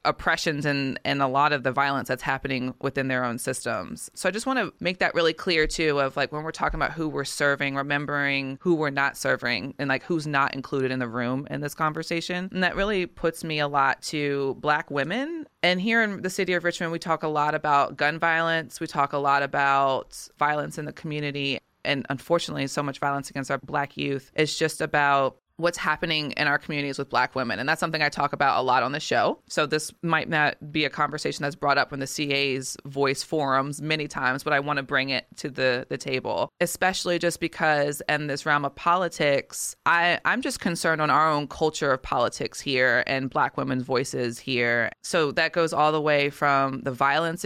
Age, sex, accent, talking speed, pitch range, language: 20-39, female, American, 215 wpm, 140-165 Hz, English